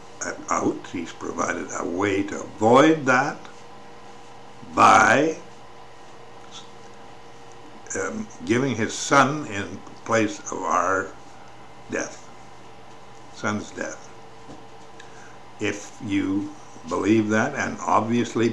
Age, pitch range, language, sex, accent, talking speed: 60-79, 115-150 Hz, English, male, American, 85 wpm